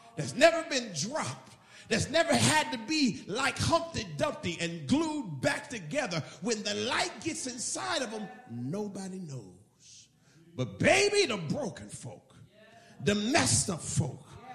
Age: 50-69